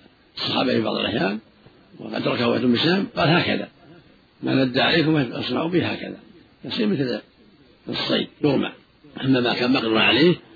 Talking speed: 135 wpm